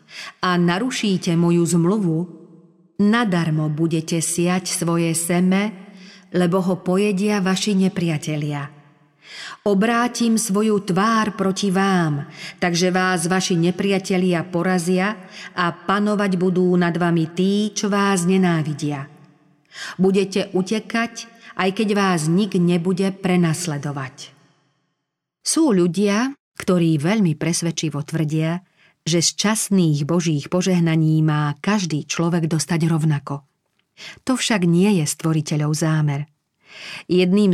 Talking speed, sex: 100 wpm, female